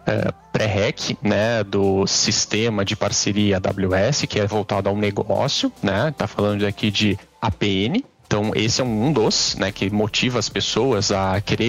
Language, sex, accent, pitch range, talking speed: Portuguese, male, Brazilian, 105-130 Hz, 165 wpm